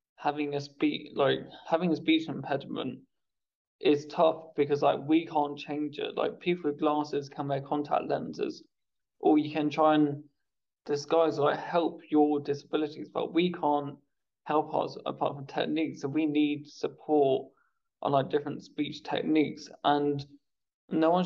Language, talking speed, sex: English, 150 wpm, male